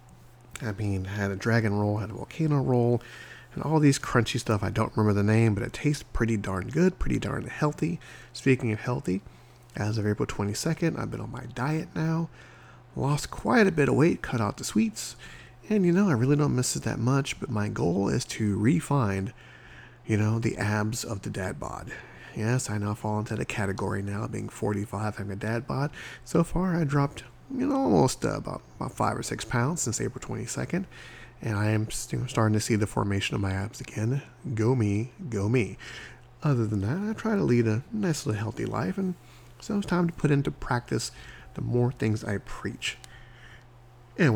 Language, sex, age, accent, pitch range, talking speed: English, male, 30-49, American, 110-140 Hz, 200 wpm